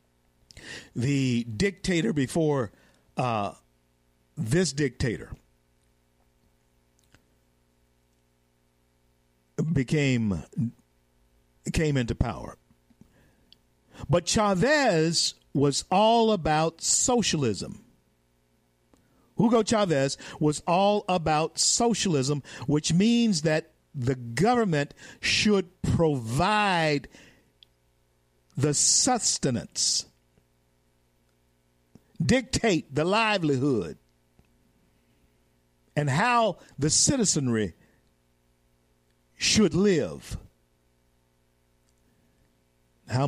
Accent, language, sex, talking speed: American, English, male, 55 wpm